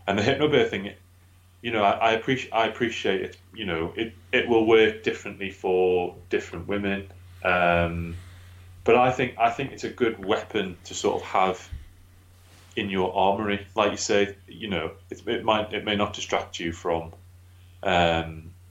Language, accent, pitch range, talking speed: English, British, 90-105 Hz, 170 wpm